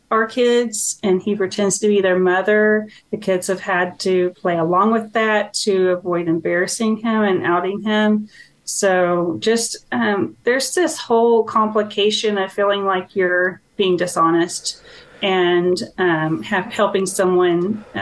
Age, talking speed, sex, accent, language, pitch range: 30-49, 145 wpm, female, American, English, 180-215 Hz